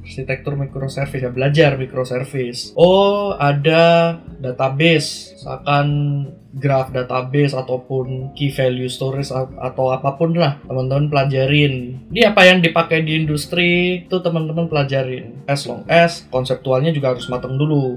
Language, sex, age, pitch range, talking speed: Indonesian, male, 20-39, 130-150 Hz, 125 wpm